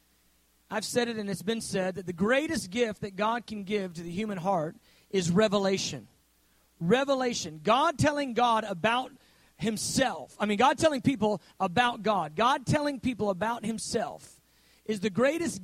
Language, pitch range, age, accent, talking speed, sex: English, 205-275 Hz, 40-59, American, 160 wpm, male